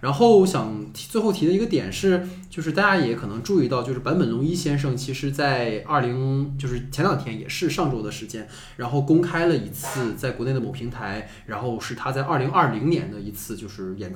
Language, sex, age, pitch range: Chinese, male, 20-39, 120-165 Hz